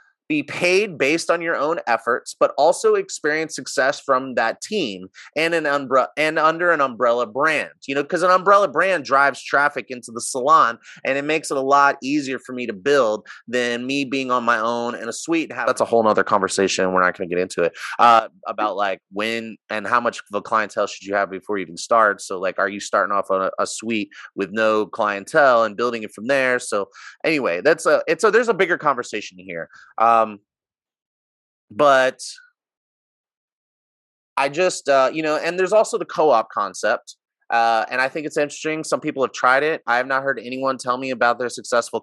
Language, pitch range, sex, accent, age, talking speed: English, 115-160 Hz, male, American, 30-49, 215 wpm